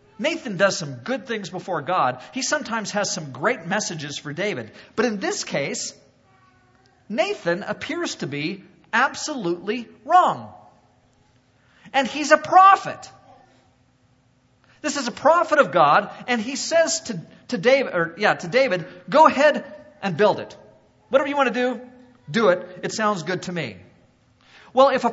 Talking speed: 155 wpm